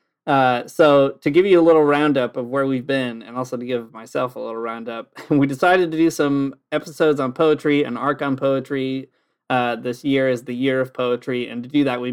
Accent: American